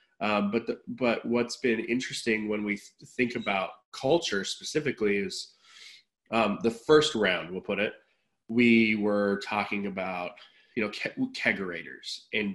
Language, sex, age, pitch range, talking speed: English, male, 20-39, 105-120 Hz, 150 wpm